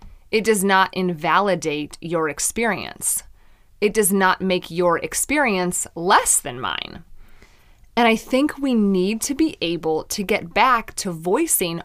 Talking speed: 140 wpm